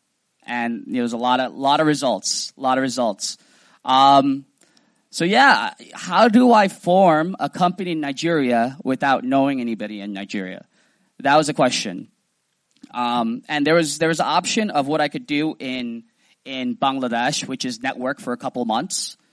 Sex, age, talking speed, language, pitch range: male, 20-39, 175 wpm, English, 130-190 Hz